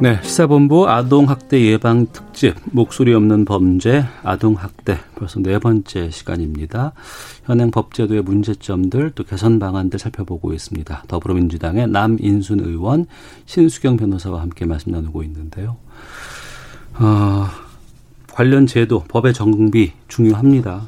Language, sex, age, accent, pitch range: Korean, male, 40-59, native, 100-140 Hz